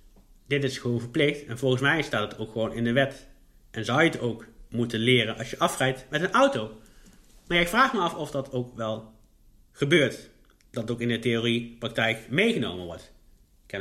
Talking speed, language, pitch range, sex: 205 wpm, Dutch, 115-135 Hz, male